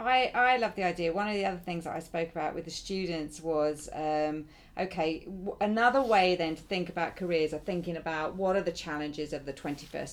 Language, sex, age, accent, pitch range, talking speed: English, female, 40-59, British, 165-205 Hz, 225 wpm